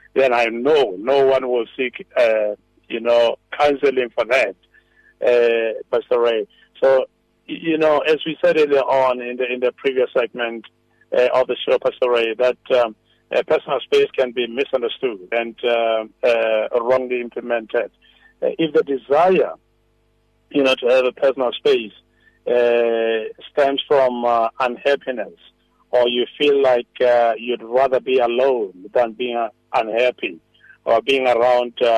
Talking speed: 155 wpm